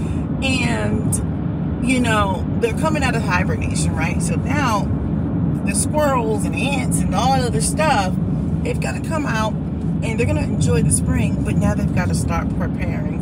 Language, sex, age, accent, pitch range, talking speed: English, female, 30-49, American, 145-205 Hz, 175 wpm